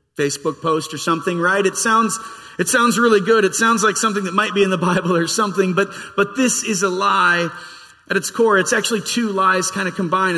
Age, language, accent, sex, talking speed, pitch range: 30-49, English, American, male, 225 wpm, 150-200 Hz